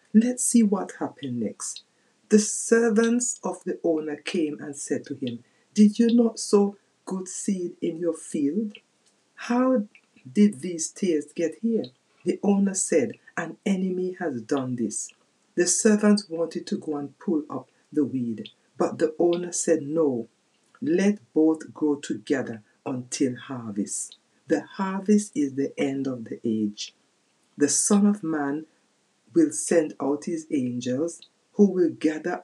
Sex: female